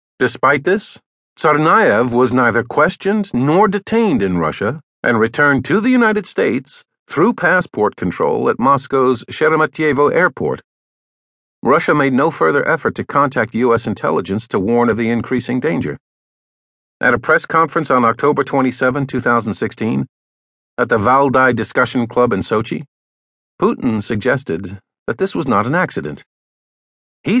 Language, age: English, 50-69